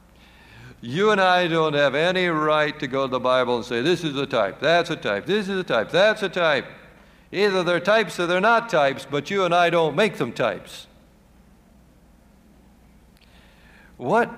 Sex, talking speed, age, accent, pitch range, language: male, 185 wpm, 60-79, American, 125-180 Hz, English